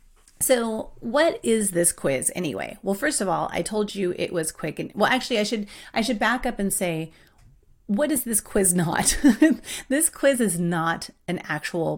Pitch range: 180-235 Hz